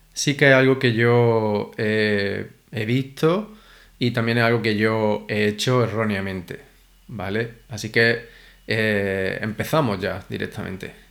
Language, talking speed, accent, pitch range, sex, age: Spanish, 135 wpm, Spanish, 110-130 Hz, male, 20-39